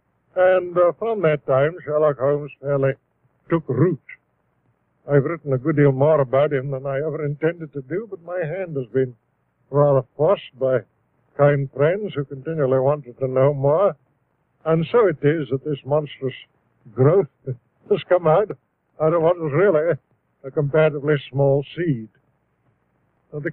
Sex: male